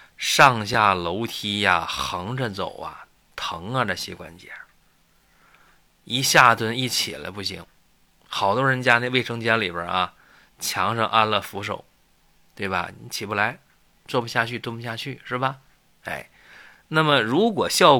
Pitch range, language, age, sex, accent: 95-130 Hz, Chinese, 20-39, male, native